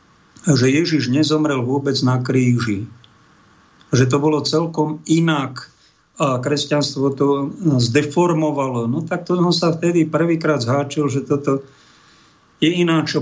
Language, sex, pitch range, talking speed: Slovak, male, 135-160 Hz, 120 wpm